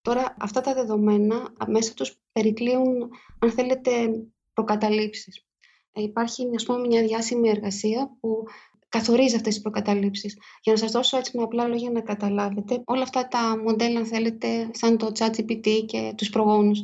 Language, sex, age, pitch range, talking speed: Greek, female, 20-39, 220-250 Hz, 155 wpm